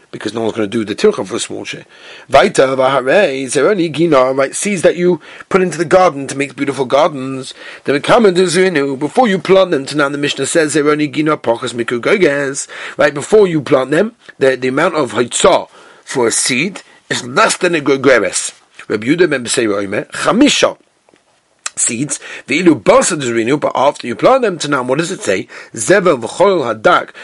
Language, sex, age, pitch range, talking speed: English, male, 40-59, 135-190 Hz, 175 wpm